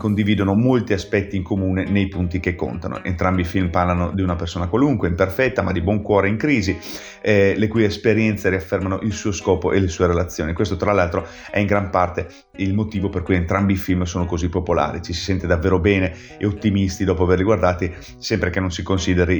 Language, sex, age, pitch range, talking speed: Italian, male, 30-49, 90-105 Hz, 210 wpm